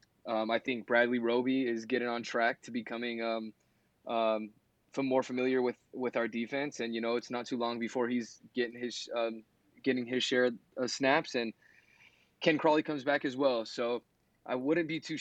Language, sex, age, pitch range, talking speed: English, male, 20-39, 110-130 Hz, 190 wpm